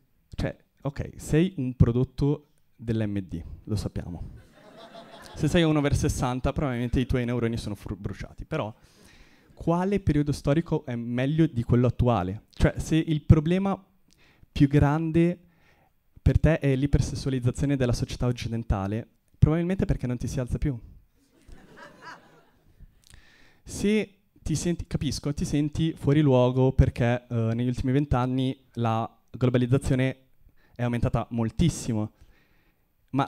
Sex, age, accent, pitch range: male, 20-39, native, 115-150 Hz